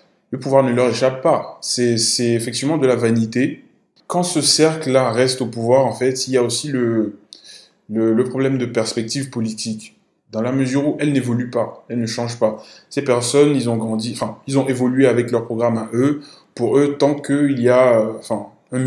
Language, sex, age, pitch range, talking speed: French, male, 20-39, 115-140 Hz, 205 wpm